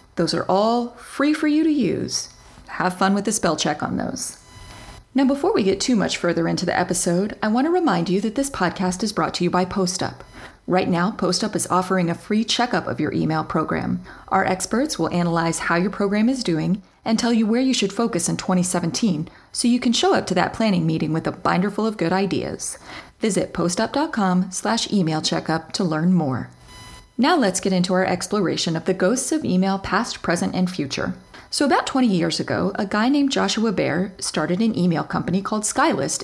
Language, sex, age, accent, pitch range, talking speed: English, female, 30-49, American, 170-220 Hz, 205 wpm